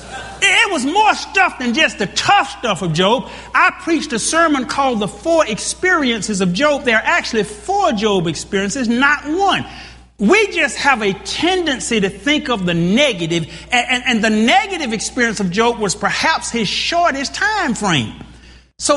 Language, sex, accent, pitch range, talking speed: English, male, American, 190-285 Hz, 170 wpm